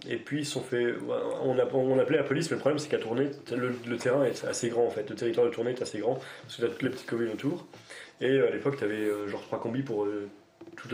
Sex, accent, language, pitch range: male, French, French, 110-140 Hz